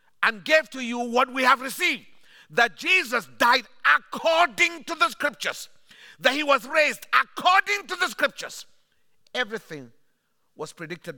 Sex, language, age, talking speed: male, English, 50-69, 140 wpm